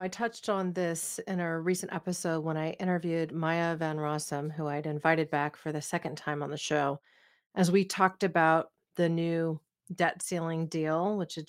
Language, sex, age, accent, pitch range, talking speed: English, female, 40-59, American, 155-185 Hz, 190 wpm